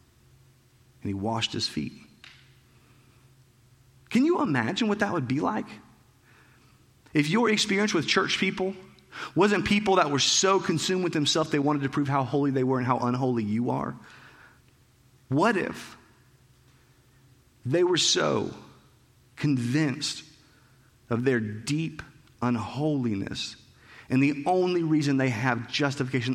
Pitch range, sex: 120-145 Hz, male